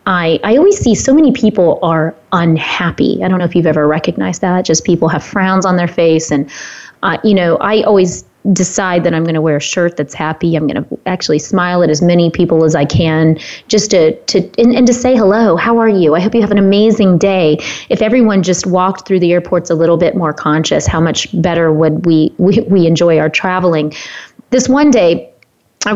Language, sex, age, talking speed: English, female, 30-49, 220 wpm